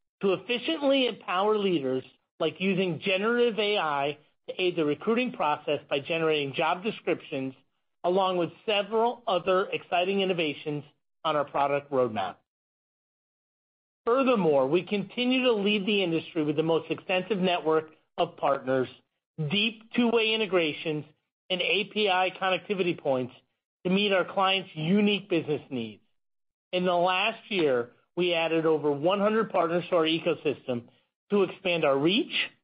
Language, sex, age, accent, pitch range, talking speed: English, male, 40-59, American, 155-205 Hz, 130 wpm